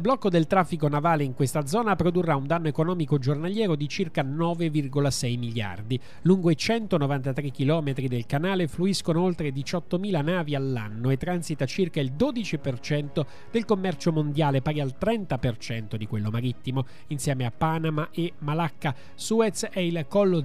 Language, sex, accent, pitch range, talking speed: Italian, male, native, 140-175 Hz, 150 wpm